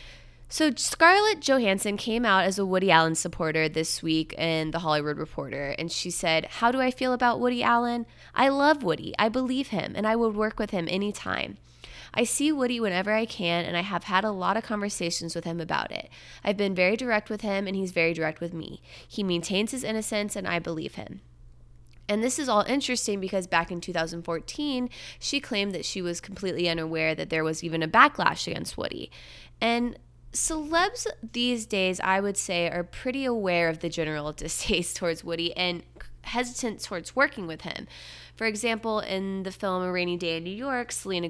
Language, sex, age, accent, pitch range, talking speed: English, female, 20-39, American, 165-225 Hz, 200 wpm